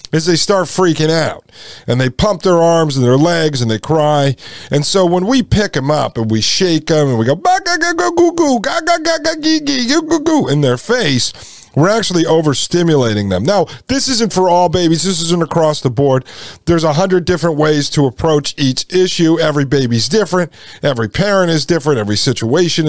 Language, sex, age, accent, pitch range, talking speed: English, male, 40-59, American, 130-170 Hz, 175 wpm